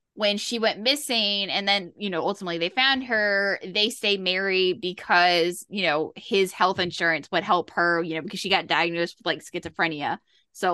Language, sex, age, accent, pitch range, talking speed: English, female, 10-29, American, 185-245 Hz, 190 wpm